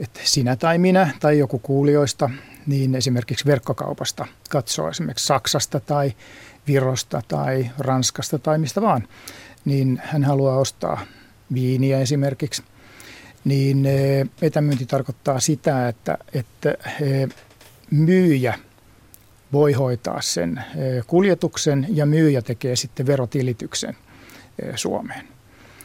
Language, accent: Finnish, native